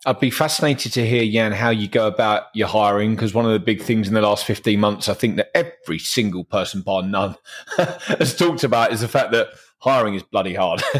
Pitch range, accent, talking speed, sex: 110-130 Hz, British, 230 wpm, male